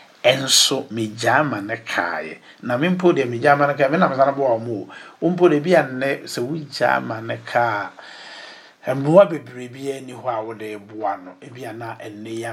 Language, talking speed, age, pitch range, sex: English, 180 wpm, 60-79, 115-140 Hz, male